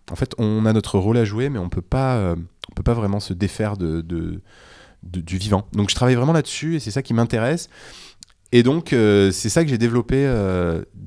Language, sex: French, male